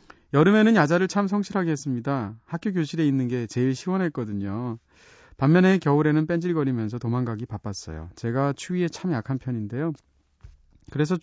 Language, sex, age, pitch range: Korean, male, 30-49, 115-170 Hz